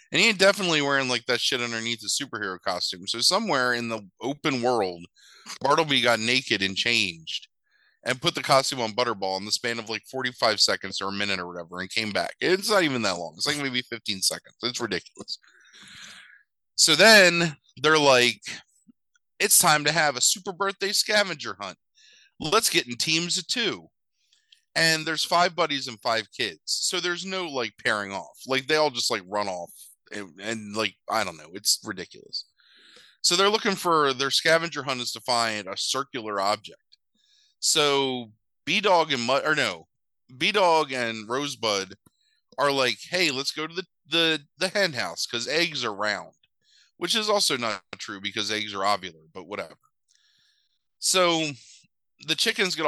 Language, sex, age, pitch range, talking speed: English, male, 30-49, 105-165 Hz, 175 wpm